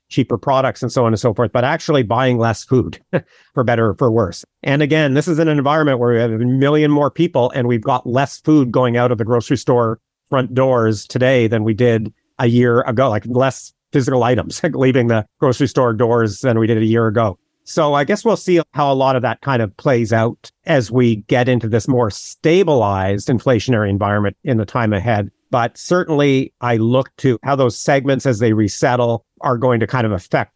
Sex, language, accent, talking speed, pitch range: male, English, American, 220 wpm, 115-135 Hz